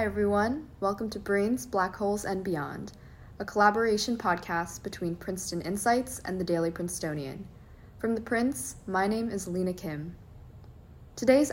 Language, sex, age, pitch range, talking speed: English, female, 20-39, 170-210 Hz, 145 wpm